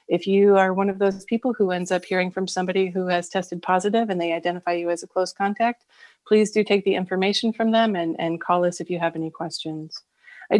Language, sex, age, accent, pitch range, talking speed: English, female, 30-49, American, 175-210 Hz, 240 wpm